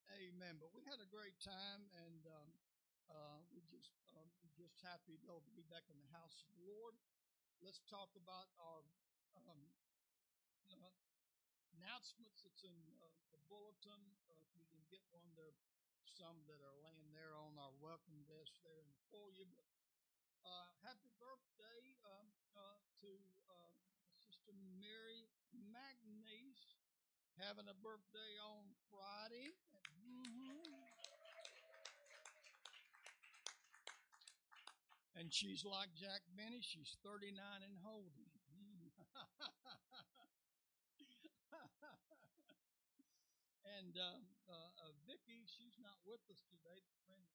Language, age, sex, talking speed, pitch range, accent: English, 60-79, male, 120 wpm, 165-215 Hz, American